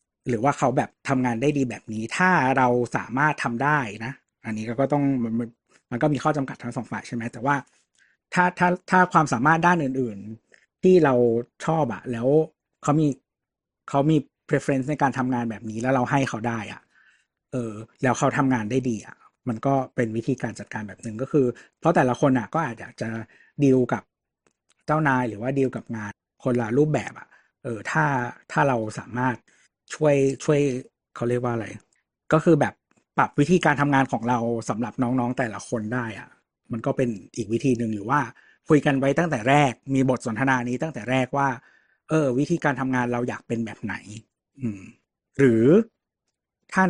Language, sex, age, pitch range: Thai, male, 60-79, 120-145 Hz